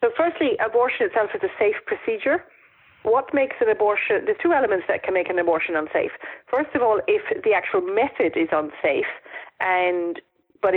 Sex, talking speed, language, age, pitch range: female, 180 wpm, English, 40-59, 175-270 Hz